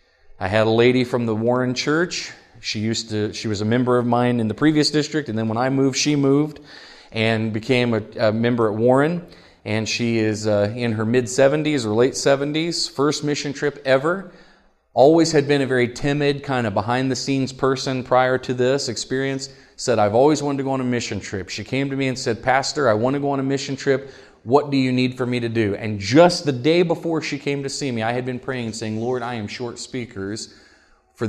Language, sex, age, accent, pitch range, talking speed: English, male, 40-59, American, 110-135 Hz, 230 wpm